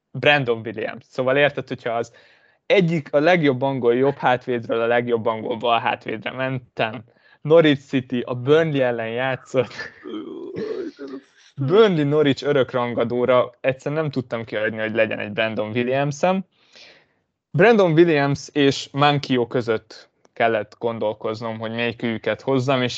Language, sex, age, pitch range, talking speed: Hungarian, male, 20-39, 115-150 Hz, 125 wpm